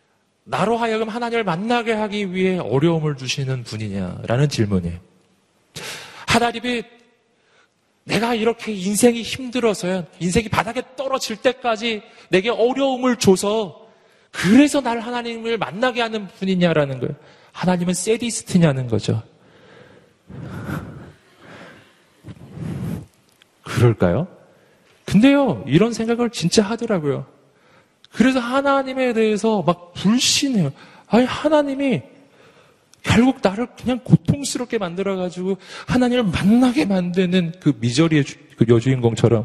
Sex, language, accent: male, Korean, native